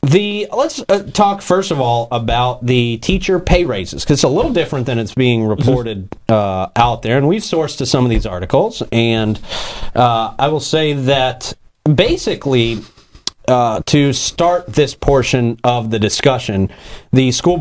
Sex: male